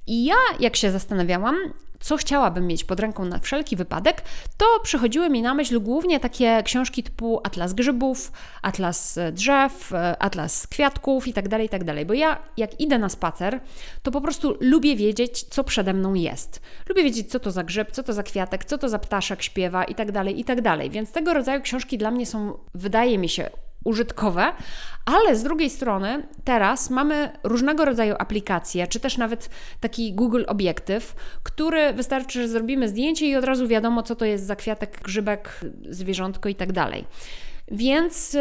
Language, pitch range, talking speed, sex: Polish, 205-280 Hz, 170 wpm, female